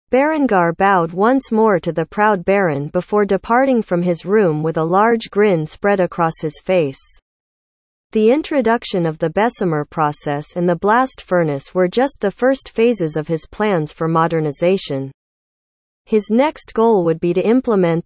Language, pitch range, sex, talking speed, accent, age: English, 165-225 Hz, female, 160 wpm, American, 40-59